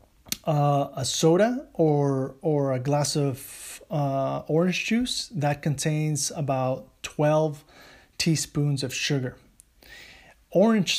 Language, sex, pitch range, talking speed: English, male, 140-165 Hz, 105 wpm